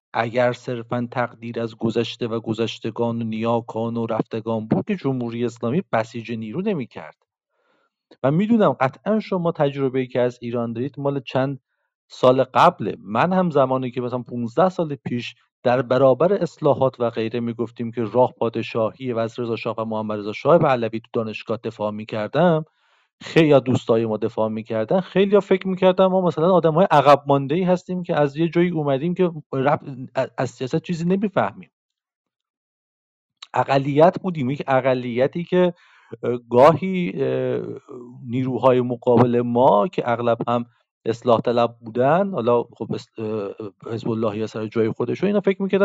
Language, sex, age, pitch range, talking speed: English, male, 50-69, 115-170 Hz, 150 wpm